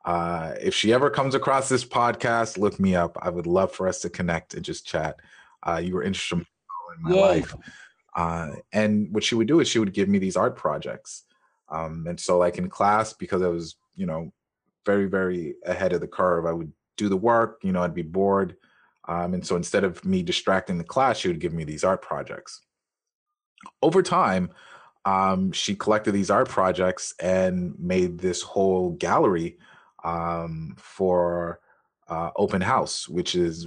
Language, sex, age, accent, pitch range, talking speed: English, male, 30-49, American, 85-115 Hz, 185 wpm